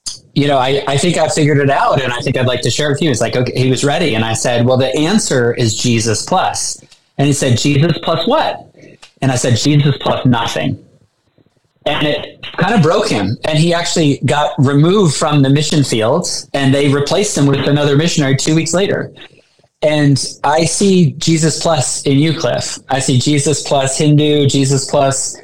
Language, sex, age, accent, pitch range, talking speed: English, male, 20-39, American, 130-155 Hz, 205 wpm